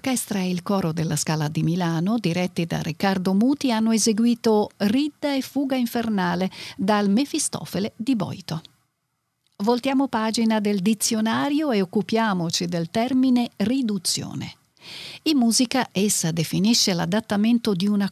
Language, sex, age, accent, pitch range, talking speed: Italian, female, 50-69, native, 180-245 Hz, 125 wpm